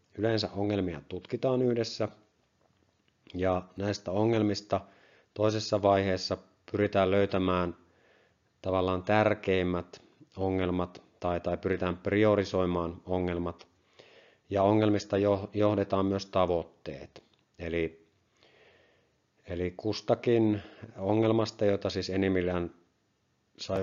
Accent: native